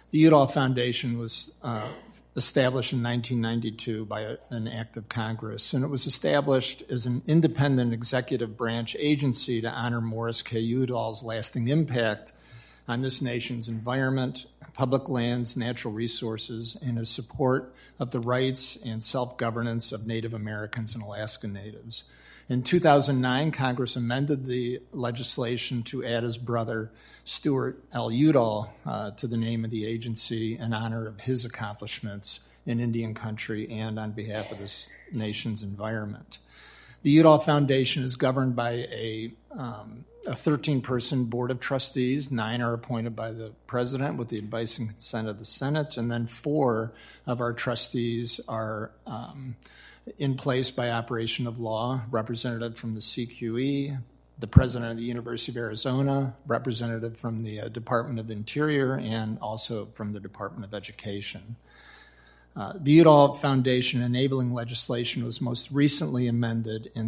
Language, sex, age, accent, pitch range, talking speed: English, male, 50-69, American, 115-130 Hz, 145 wpm